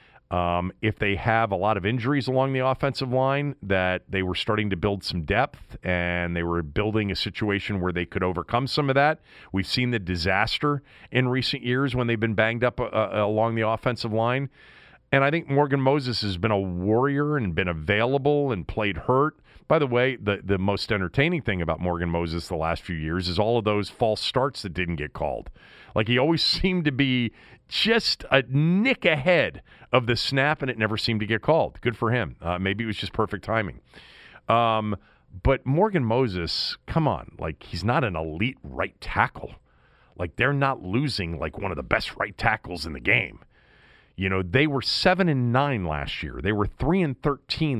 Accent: American